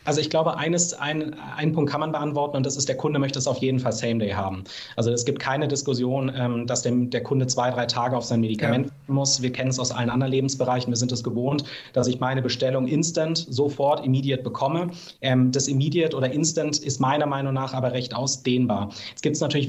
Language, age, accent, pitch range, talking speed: German, 30-49, German, 125-145 Hz, 220 wpm